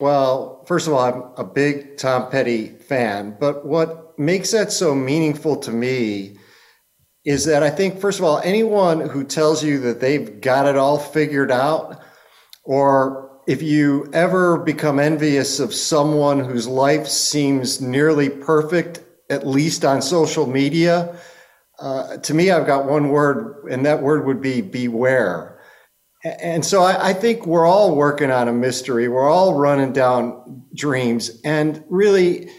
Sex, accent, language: male, American, English